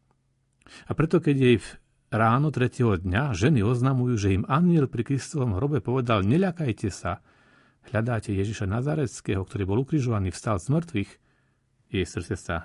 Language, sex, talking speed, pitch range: Slovak, male, 145 wpm, 95-130 Hz